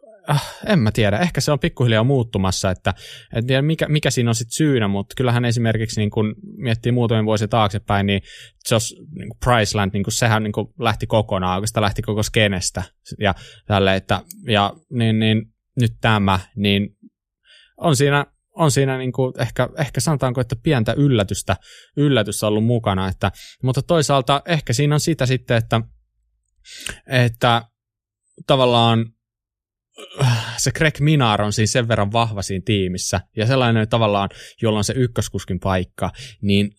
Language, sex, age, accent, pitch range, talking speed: Finnish, male, 20-39, native, 100-130 Hz, 155 wpm